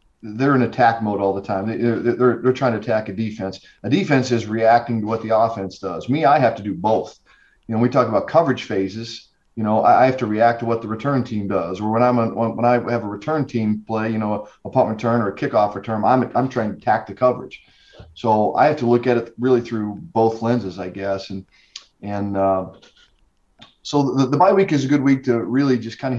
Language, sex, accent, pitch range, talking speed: English, male, American, 105-120 Hz, 250 wpm